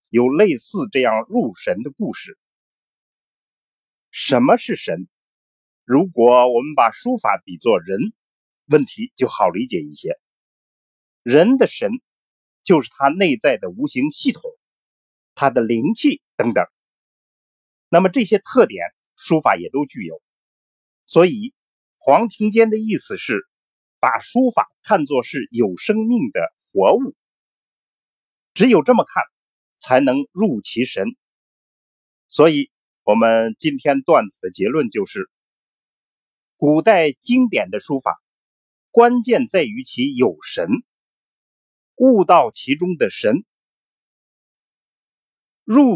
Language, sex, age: Chinese, male, 50-69